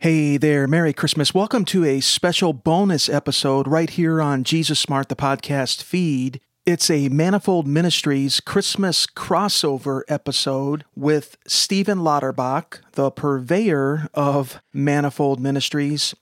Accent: American